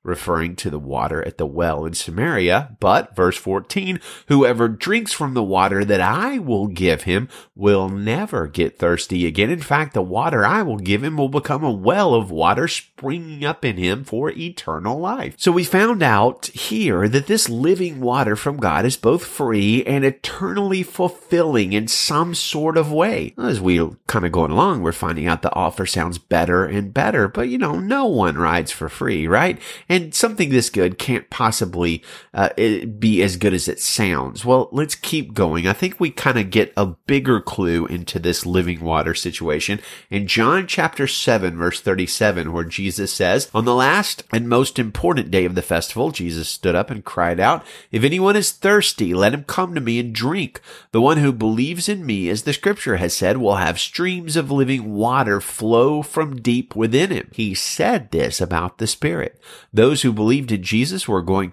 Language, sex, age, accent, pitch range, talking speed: English, male, 30-49, American, 95-145 Hz, 190 wpm